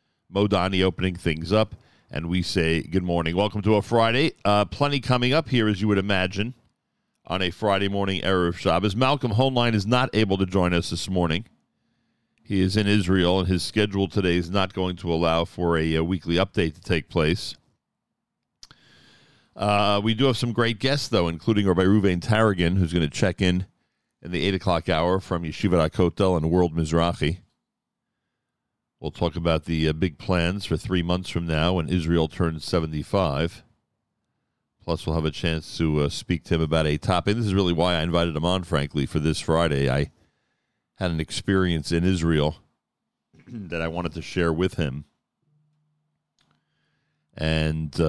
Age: 50-69